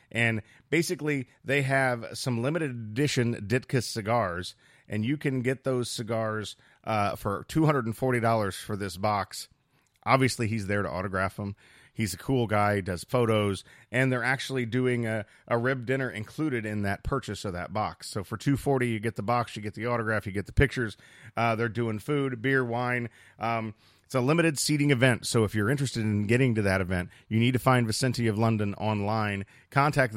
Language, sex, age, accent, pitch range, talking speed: English, male, 40-59, American, 105-130 Hz, 185 wpm